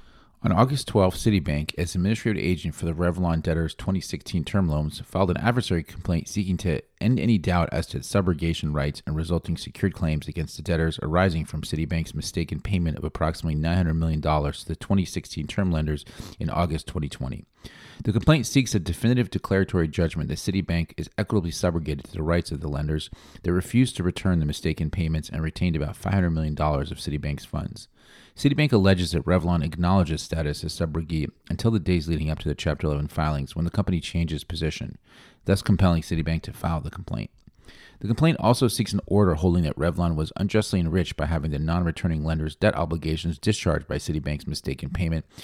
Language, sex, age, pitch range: English, male, 30-49, 80-95 Hz